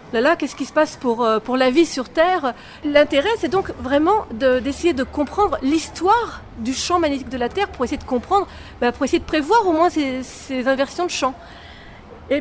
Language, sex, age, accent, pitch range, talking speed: French, female, 40-59, French, 280-360 Hz, 220 wpm